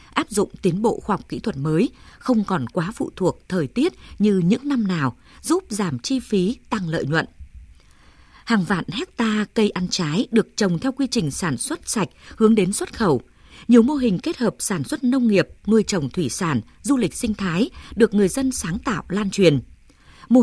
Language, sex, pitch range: Vietnamese, female, 165-240 Hz